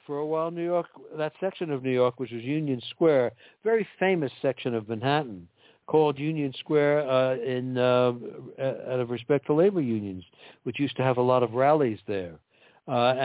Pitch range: 125-155 Hz